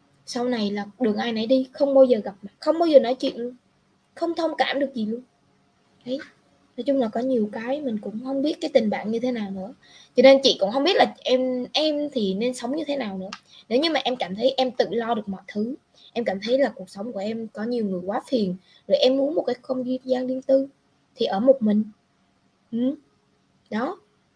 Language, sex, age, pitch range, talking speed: Vietnamese, female, 20-39, 205-260 Hz, 235 wpm